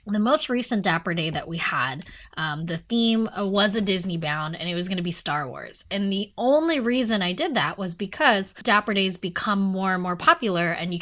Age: 10-29